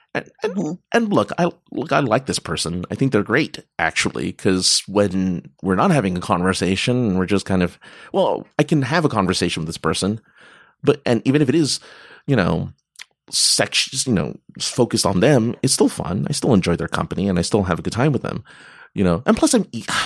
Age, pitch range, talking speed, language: 30-49, 95-135 Hz, 220 wpm, English